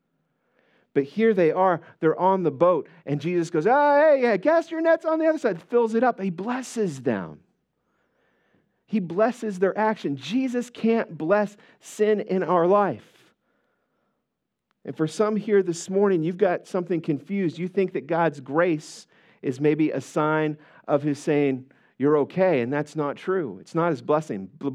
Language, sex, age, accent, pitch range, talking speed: English, male, 40-59, American, 135-185 Hz, 170 wpm